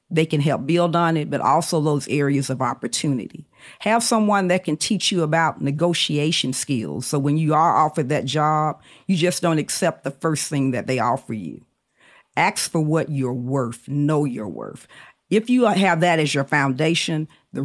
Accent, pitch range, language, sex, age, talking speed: American, 140-170 Hz, English, female, 50-69, 185 wpm